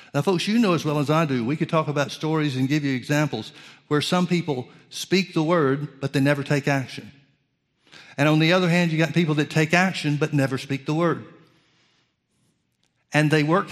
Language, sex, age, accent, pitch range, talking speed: English, male, 60-79, American, 140-170 Hz, 210 wpm